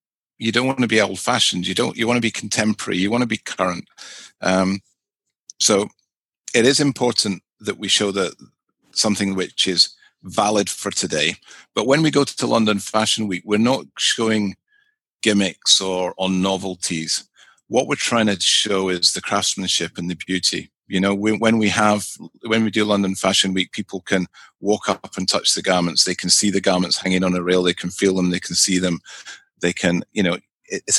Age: 40-59